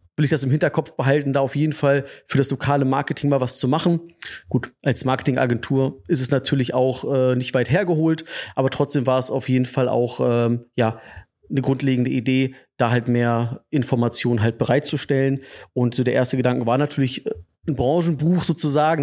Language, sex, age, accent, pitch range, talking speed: German, male, 30-49, German, 125-145 Hz, 185 wpm